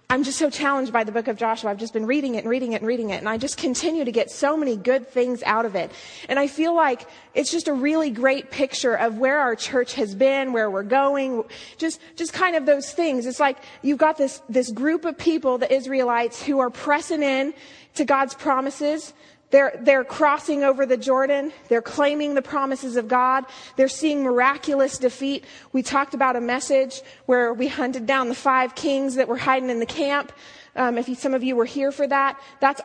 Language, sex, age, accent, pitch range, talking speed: English, female, 30-49, American, 245-285 Hz, 220 wpm